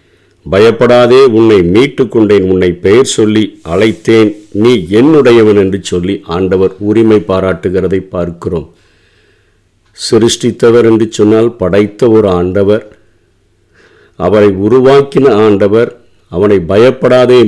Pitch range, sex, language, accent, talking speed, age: 105-120 Hz, male, Tamil, native, 90 wpm, 50-69